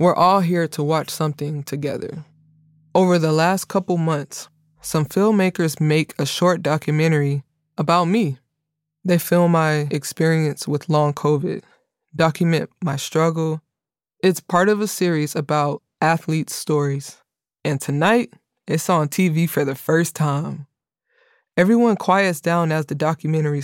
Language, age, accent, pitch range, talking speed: English, 20-39, American, 145-175 Hz, 135 wpm